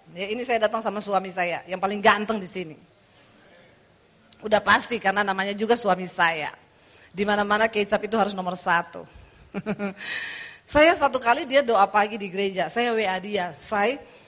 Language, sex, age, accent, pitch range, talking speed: English, female, 40-59, Indonesian, 190-245 Hz, 155 wpm